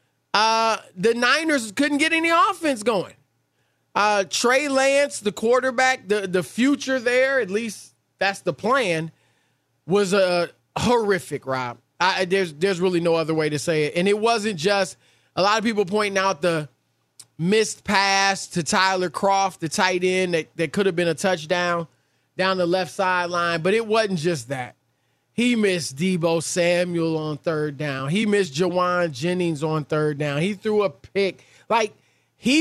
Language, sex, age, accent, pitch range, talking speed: English, male, 20-39, American, 165-220 Hz, 165 wpm